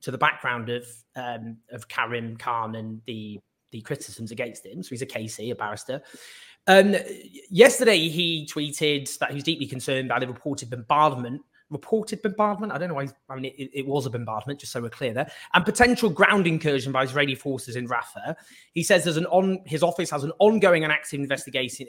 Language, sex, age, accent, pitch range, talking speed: English, male, 20-39, British, 125-170 Hz, 195 wpm